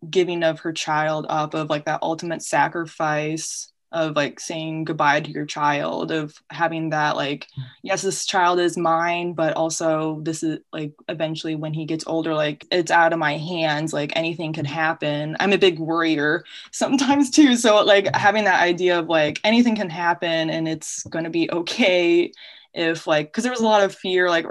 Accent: American